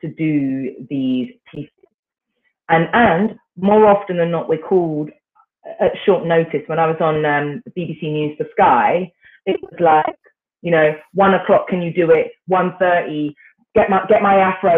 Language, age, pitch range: English, 30-49, 165-230 Hz